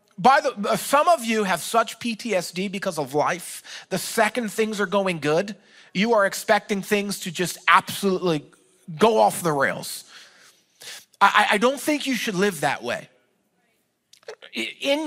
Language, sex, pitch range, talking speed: English, male, 205-260 Hz, 150 wpm